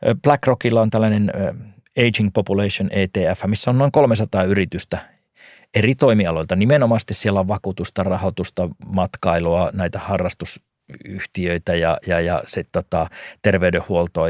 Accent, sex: native, male